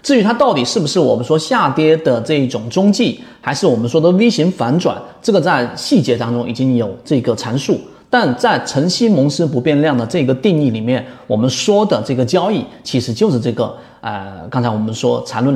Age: 30-49